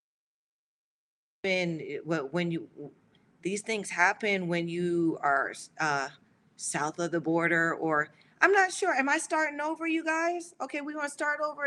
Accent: American